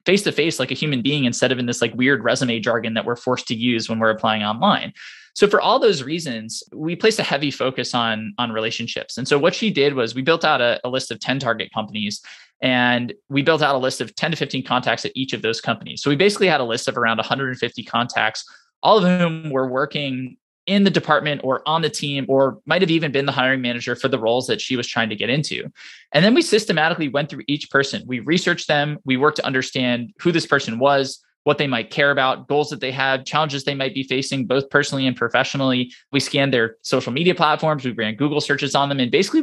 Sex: male